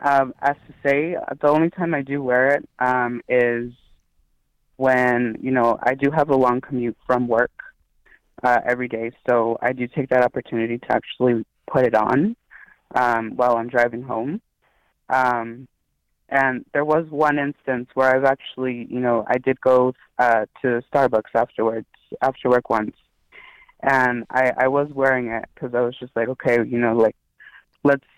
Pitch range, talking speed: 120-135 Hz, 170 wpm